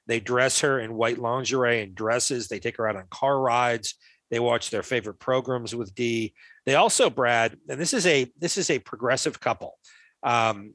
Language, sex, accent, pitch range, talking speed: English, male, American, 110-130 Hz, 195 wpm